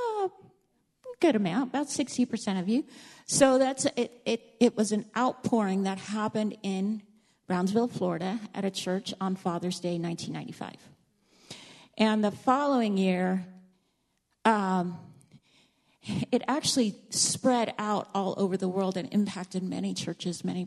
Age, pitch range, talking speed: 40-59, 185-230 Hz, 130 wpm